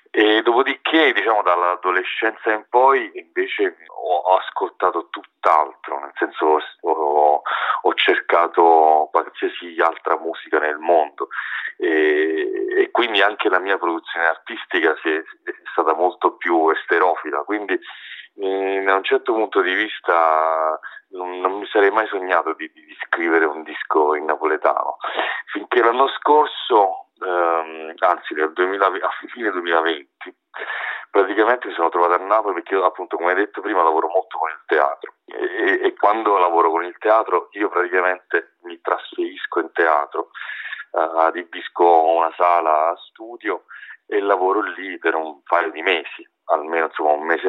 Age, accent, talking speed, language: 40-59, native, 140 wpm, Italian